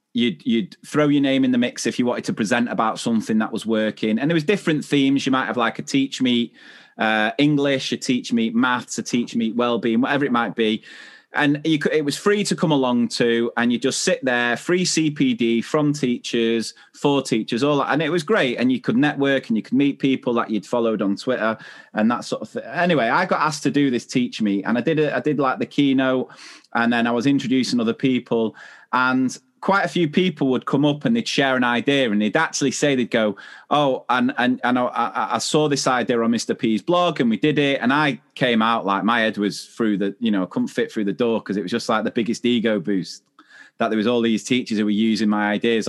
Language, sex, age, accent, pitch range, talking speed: English, male, 30-49, British, 115-150 Hz, 245 wpm